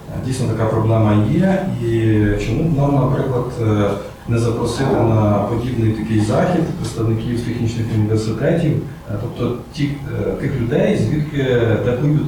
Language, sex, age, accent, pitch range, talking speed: Ukrainian, male, 40-59, native, 110-140 Hz, 110 wpm